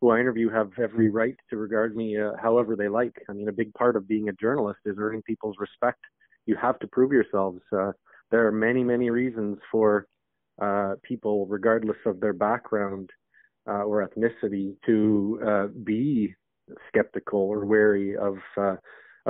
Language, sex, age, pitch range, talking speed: English, male, 30-49, 100-115 Hz, 170 wpm